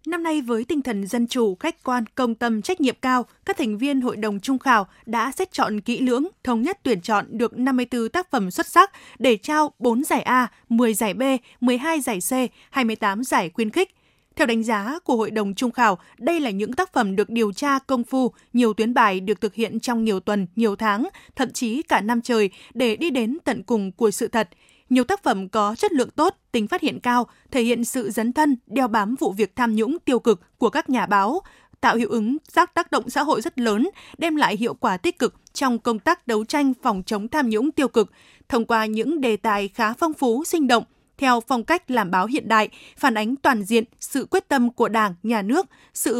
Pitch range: 225-280 Hz